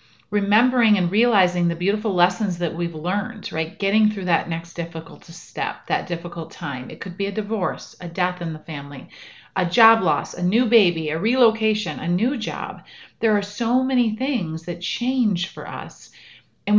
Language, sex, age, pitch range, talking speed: English, female, 40-59, 165-215 Hz, 180 wpm